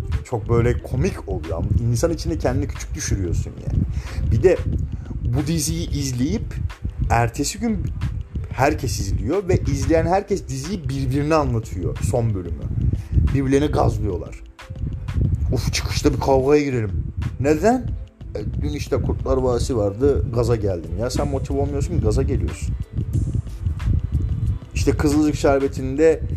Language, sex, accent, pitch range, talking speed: Turkish, male, native, 95-135 Hz, 120 wpm